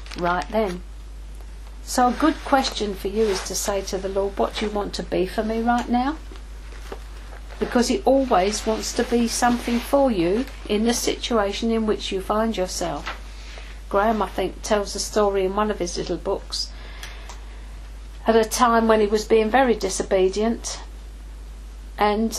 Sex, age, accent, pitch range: female, 50-69, British, 170-225 Hz